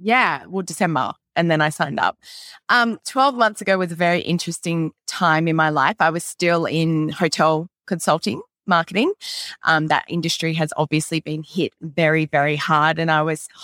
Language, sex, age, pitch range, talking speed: English, female, 20-39, 160-225 Hz, 175 wpm